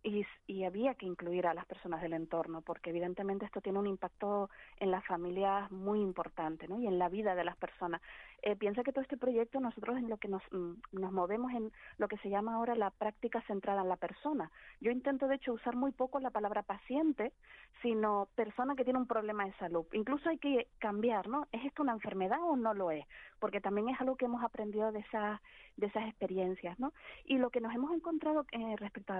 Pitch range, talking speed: 195-255 Hz, 220 wpm